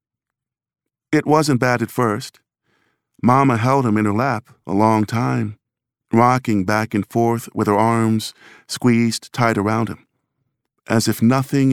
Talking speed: 145 wpm